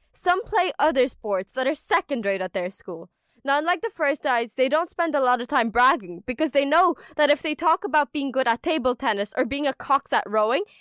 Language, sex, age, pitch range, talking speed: English, female, 10-29, 250-320 Hz, 240 wpm